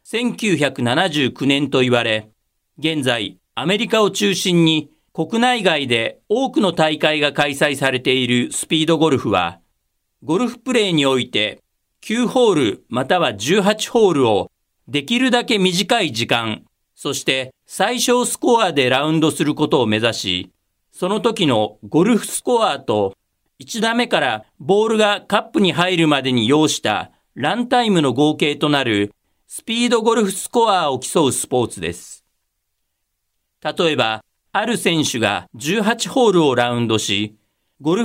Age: 50-69